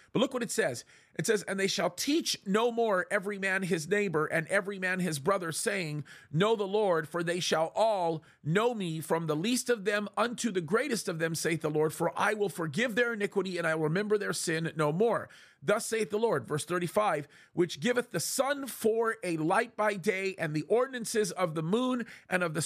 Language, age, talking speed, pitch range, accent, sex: English, 40-59, 220 wpm, 160-215 Hz, American, male